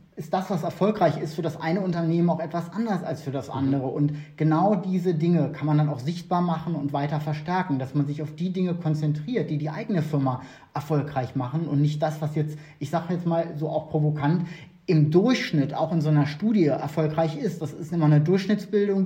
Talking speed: 215 wpm